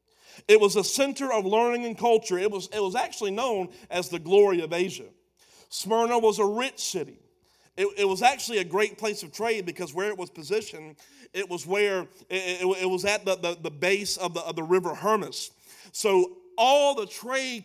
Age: 40-59